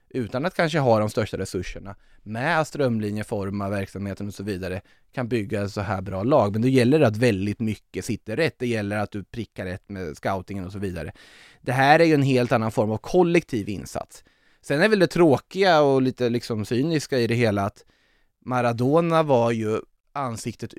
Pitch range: 100-130 Hz